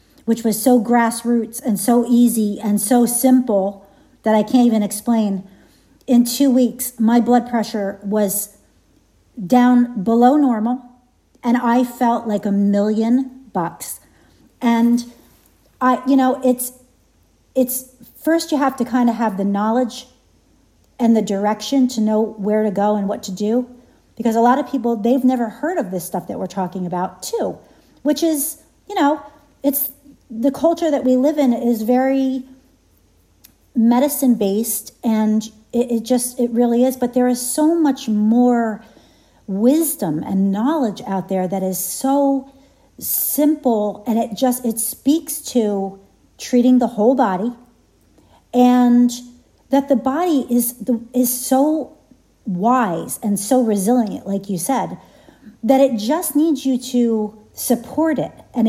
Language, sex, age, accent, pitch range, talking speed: English, female, 50-69, American, 215-260 Hz, 150 wpm